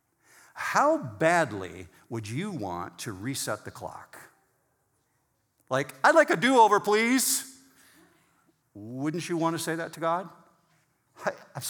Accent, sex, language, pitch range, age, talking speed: American, male, English, 110-145 Hz, 50-69, 125 wpm